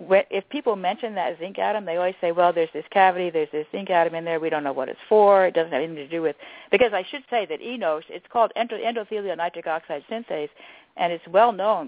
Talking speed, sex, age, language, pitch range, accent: 240 wpm, female, 60-79, English, 155-215 Hz, American